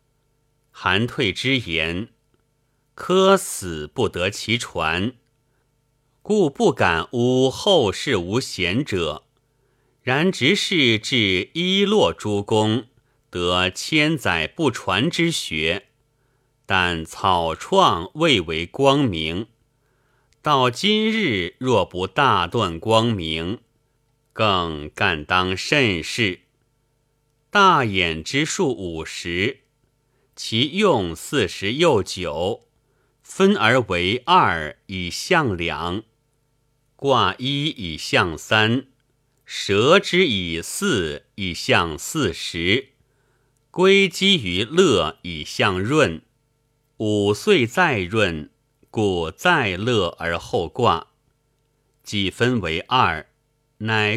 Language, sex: Chinese, male